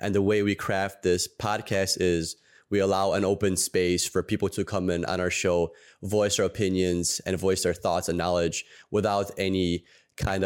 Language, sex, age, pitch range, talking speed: English, male, 20-39, 95-110 Hz, 190 wpm